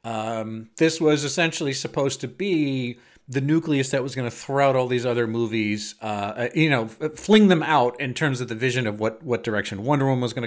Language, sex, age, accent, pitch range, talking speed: English, male, 40-59, American, 110-145 Hz, 220 wpm